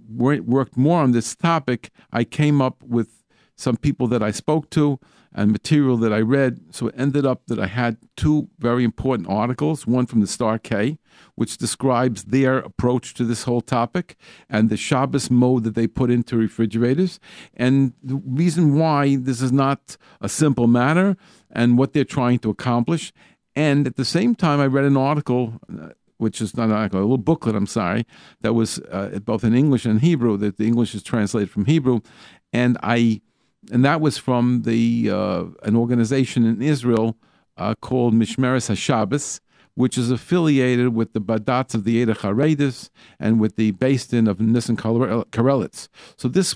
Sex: male